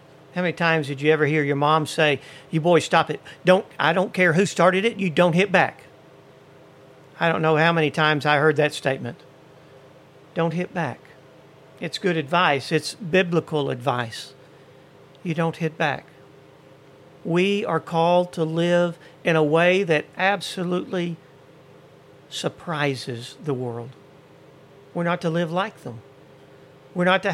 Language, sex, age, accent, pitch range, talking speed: English, male, 50-69, American, 135-170 Hz, 155 wpm